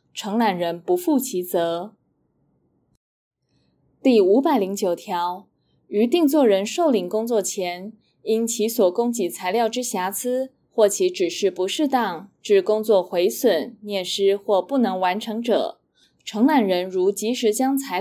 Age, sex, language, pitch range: 20-39, female, Chinese, 190-275 Hz